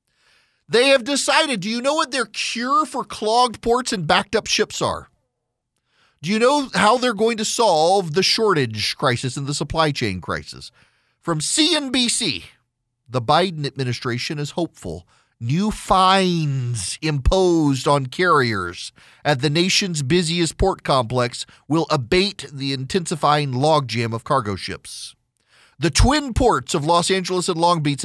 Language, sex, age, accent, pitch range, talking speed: English, male, 40-59, American, 135-190 Hz, 145 wpm